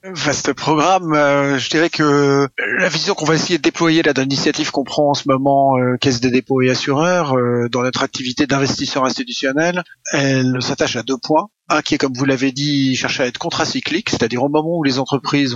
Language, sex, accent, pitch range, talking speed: French, male, French, 120-140 Hz, 210 wpm